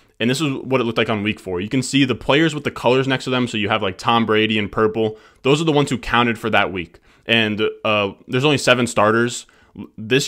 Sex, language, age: male, English, 20-39